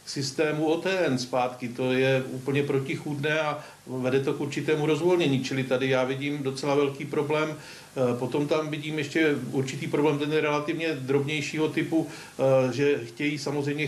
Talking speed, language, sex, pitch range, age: 150 wpm, Czech, male, 135-150 Hz, 50-69